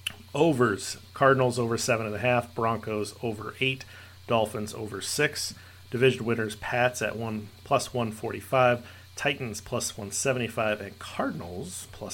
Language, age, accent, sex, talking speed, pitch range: English, 40-59, American, male, 130 wpm, 105-130 Hz